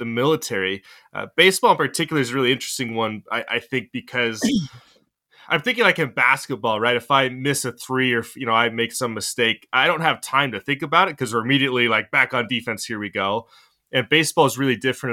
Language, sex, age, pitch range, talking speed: English, male, 20-39, 110-130 Hz, 225 wpm